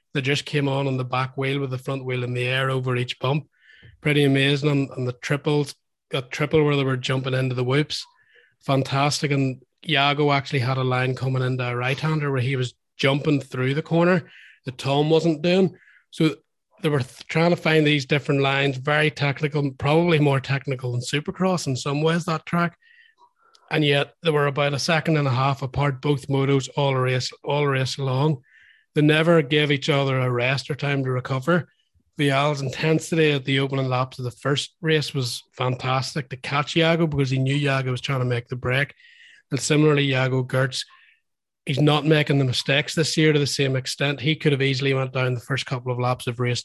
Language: English